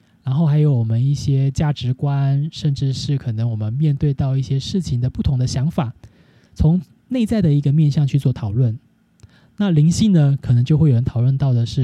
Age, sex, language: 20-39, male, Chinese